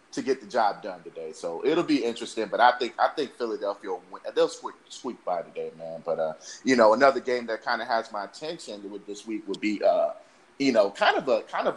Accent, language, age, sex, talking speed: American, English, 30-49, male, 250 wpm